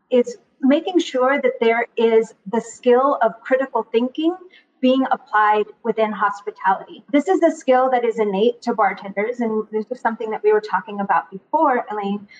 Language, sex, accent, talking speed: English, female, American, 170 wpm